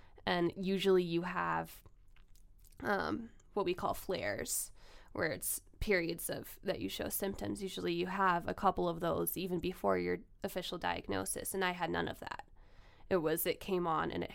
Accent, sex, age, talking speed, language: American, female, 10-29, 175 wpm, English